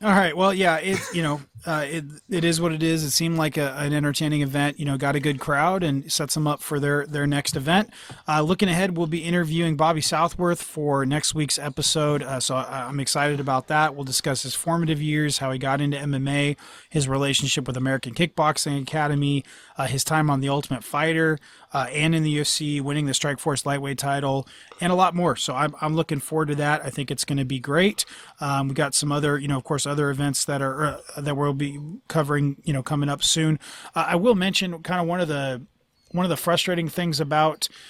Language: English